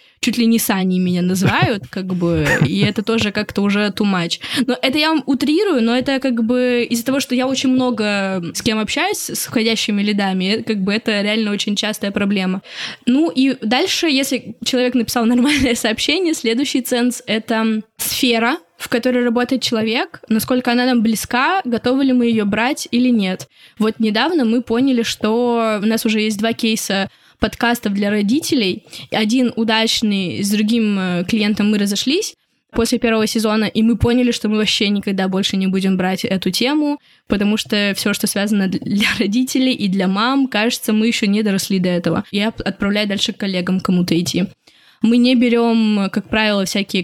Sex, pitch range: female, 205-245 Hz